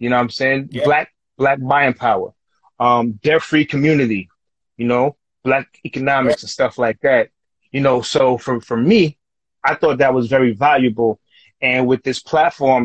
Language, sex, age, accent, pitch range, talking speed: English, male, 30-49, American, 115-135 Hz, 175 wpm